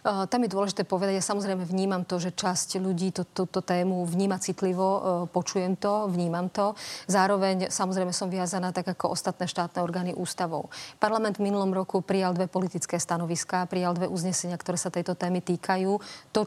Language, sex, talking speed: Slovak, female, 170 wpm